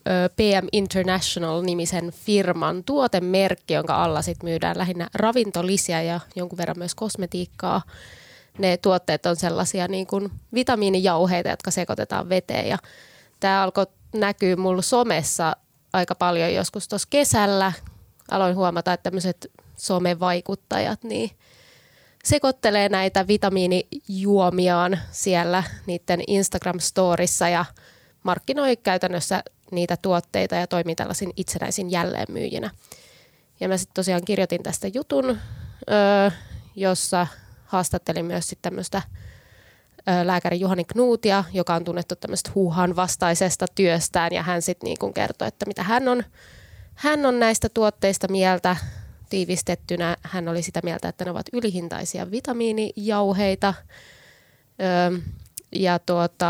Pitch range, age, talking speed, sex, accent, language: 175-200 Hz, 20-39, 110 wpm, female, native, Finnish